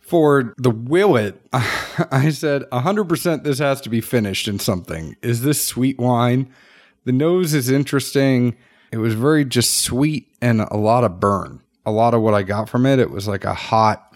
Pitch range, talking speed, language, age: 105-130 Hz, 185 wpm, English, 40-59